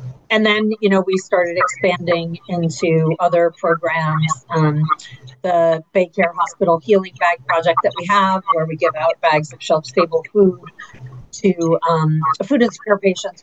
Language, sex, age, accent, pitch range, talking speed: English, female, 40-59, American, 165-200 Hz, 150 wpm